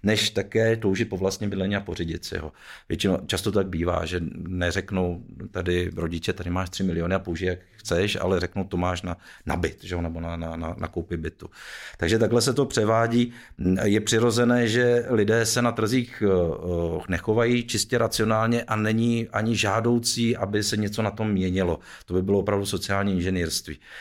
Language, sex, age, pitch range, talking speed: Czech, male, 50-69, 90-115 Hz, 180 wpm